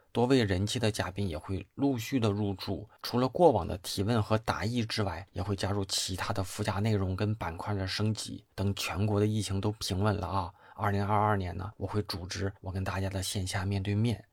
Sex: male